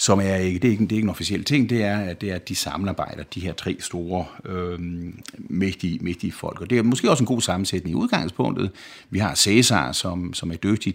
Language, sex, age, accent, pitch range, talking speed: Danish, male, 60-79, native, 90-105 Hz, 250 wpm